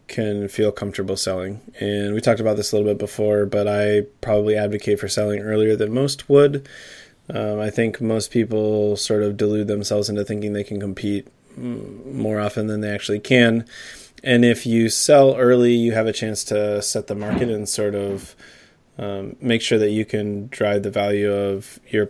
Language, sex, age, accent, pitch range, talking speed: English, male, 20-39, American, 105-120 Hz, 190 wpm